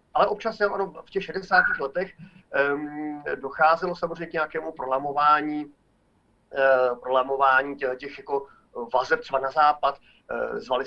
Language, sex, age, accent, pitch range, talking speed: Czech, male, 40-59, native, 130-170 Hz, 100 wpm